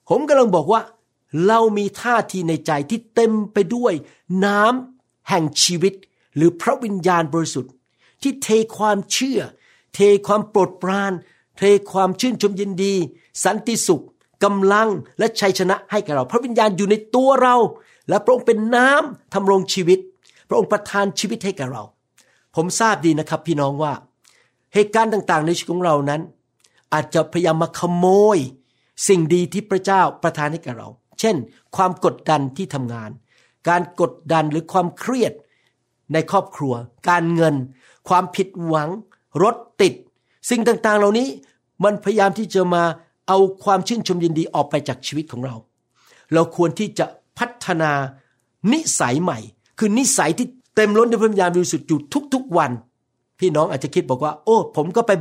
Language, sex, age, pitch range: Thai, male, 60-79, 160-215 Hz